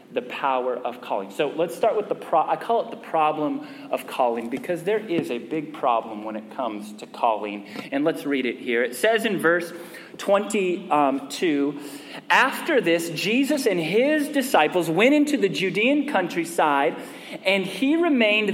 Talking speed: 170 wpm